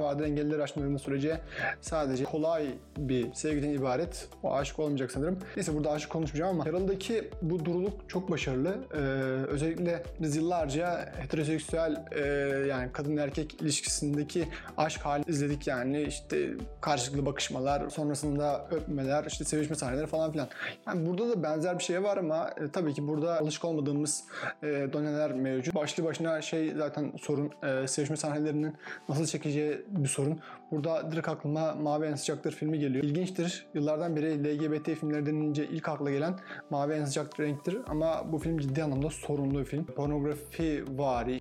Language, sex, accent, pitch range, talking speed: Turkish, male, native, 145-165 Hz, 150 wpm